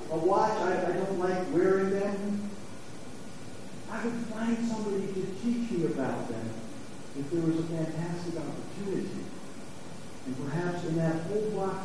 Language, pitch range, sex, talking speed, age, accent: English, 165-235 Hz, male, 145 wpm, 50-69, American